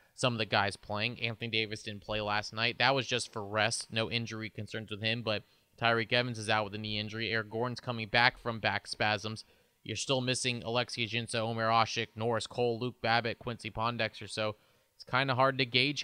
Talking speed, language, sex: 215 wpm, English, male